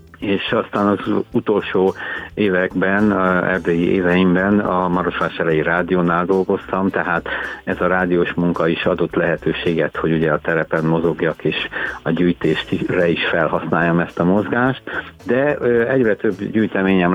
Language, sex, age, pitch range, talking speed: Hungarian, male, 50-69, 85-95 Hz, 135 wpm